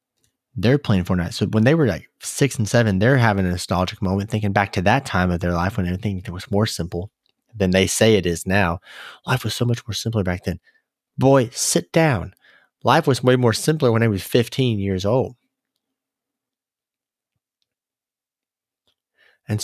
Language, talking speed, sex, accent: English, 175 wpm, male, American